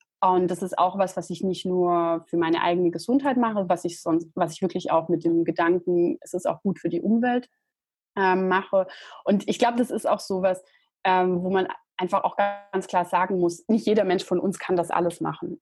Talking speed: 225 wpm